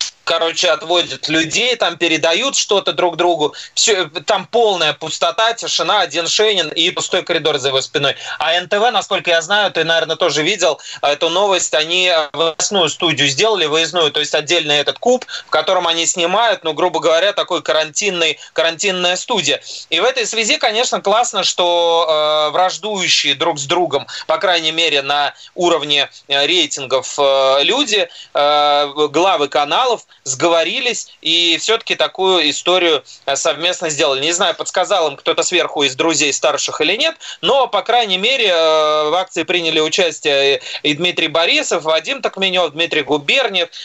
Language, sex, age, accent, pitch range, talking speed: Russian, male, 30-49, native, 155-190 Hz, 150 wpm